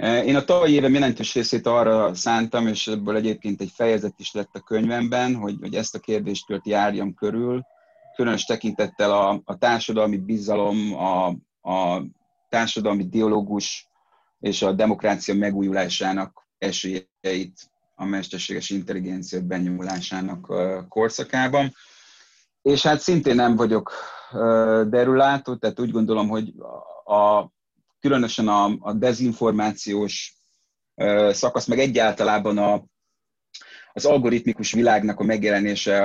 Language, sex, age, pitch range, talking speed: Hungarian, male, 30-49, 100-115 Hz, 115 wpm